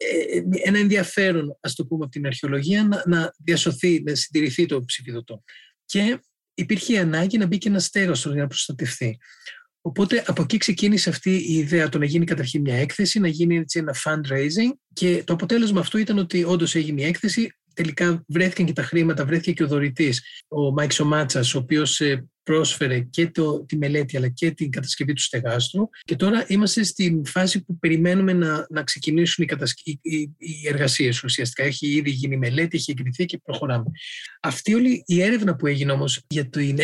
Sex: male